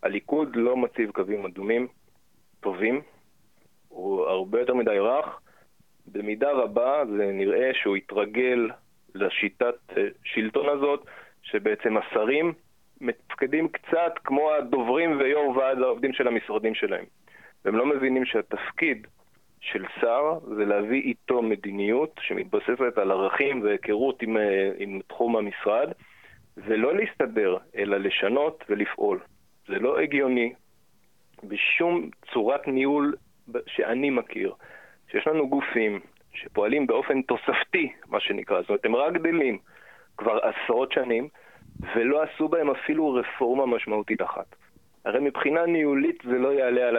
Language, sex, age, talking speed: Hebrew, male, 30-49, 120 wpm